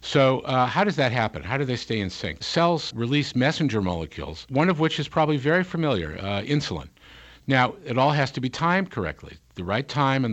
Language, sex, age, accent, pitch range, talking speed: English, male, 50-69, American, 95-130 Hz, 215 wpm